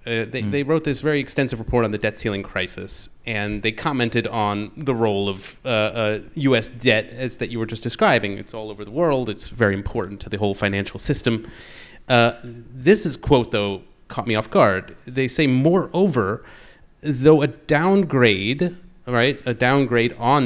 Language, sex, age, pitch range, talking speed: English, male, 30-49, 110-150 Hz, 180 wpm